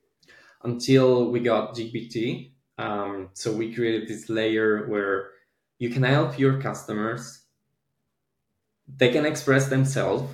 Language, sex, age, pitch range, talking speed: English, male, 20-39, 105-130 Hz, 115 wpm